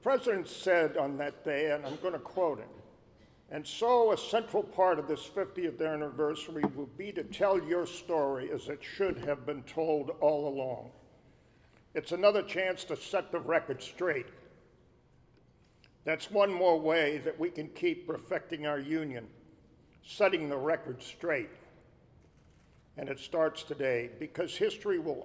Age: 50-69